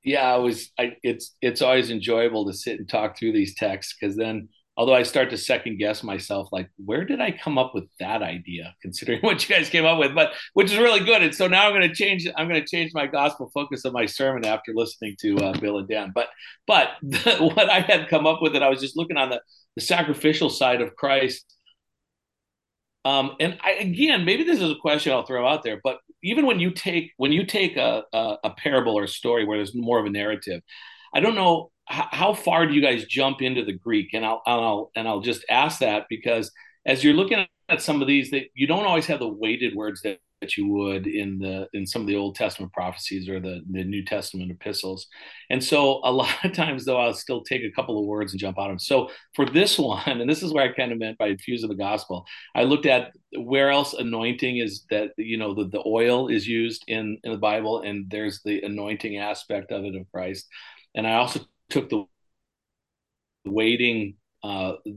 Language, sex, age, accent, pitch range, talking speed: English, male, 40-59, American, 105-150 Hz, 230 wpm